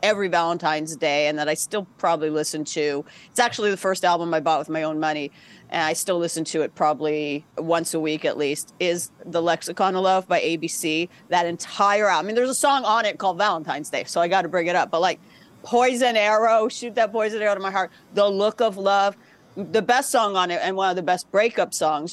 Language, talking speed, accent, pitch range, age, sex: English, 235 wpm, American, 160-205 Hz, 40-59, female